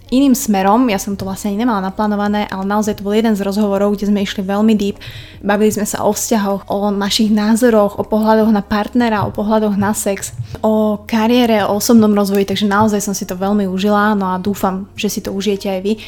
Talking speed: 215 wpm